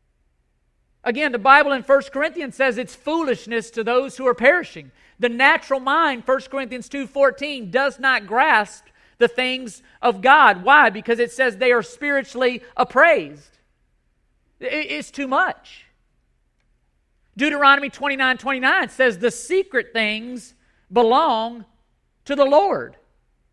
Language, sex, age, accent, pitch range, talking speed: English, male, 40-59, American, 220-275 Hz, 130 wpm